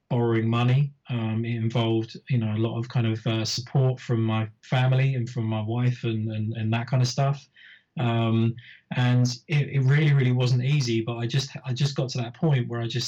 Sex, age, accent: male, 20-39, British